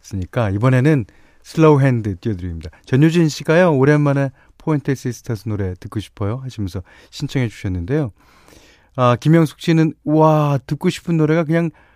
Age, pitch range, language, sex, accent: 40-59, 105-160 Hz, Korean, male, native